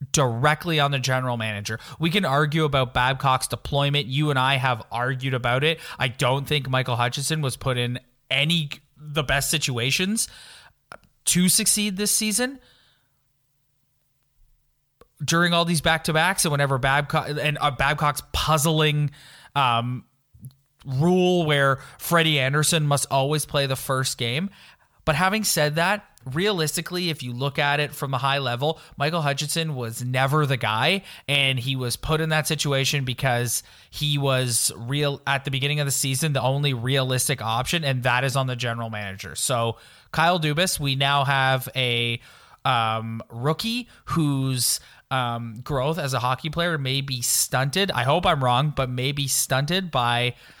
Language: English